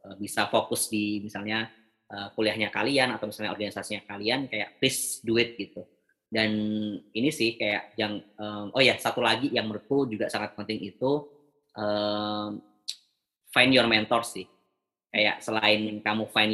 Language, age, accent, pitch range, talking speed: Indonesian, 20-39, native, 105-115 Hz, 145 wpm